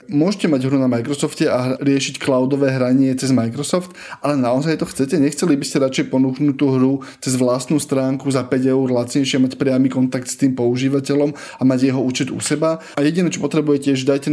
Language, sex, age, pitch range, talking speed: Slovak, male, 20-39, 130-145 Hz, 200 wpm